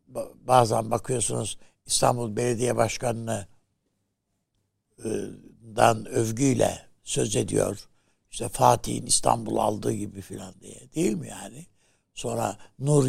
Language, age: Turkish, 60-79